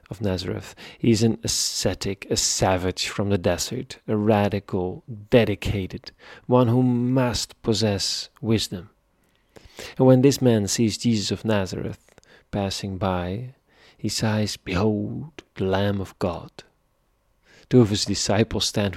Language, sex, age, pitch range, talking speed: English, male, 40-59, 95-120 Hz, 130 wpm